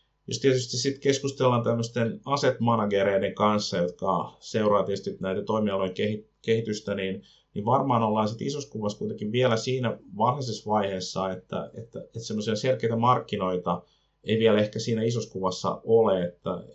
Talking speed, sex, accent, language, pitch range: 135 wpm, male, native, Finnish, 100-115 Hz